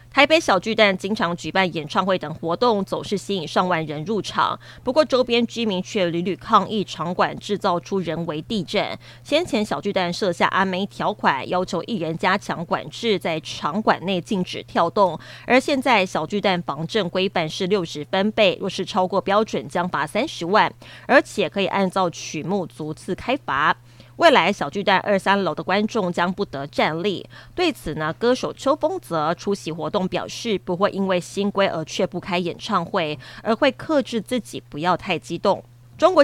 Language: Chinese